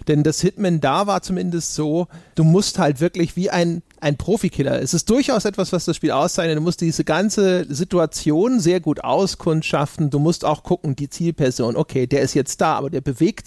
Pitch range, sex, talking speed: 150-190 Hz, male, 200 wpm